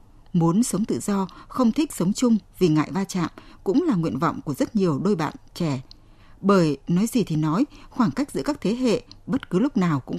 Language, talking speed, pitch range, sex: Vietnamese, 225 wpm, 165-230 Hz, female